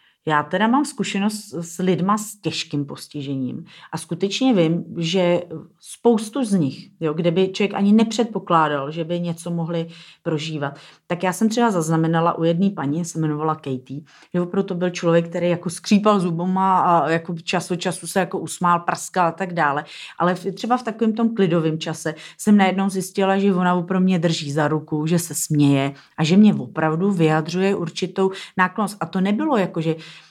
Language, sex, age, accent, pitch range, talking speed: Czech, female, 30-49, native, 160-200 Hz, 180 wpm